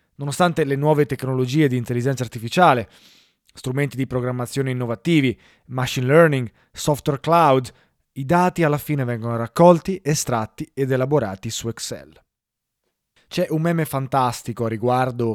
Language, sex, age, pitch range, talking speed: Italian, male, 20-39, 120-150 Hz, 125 wpm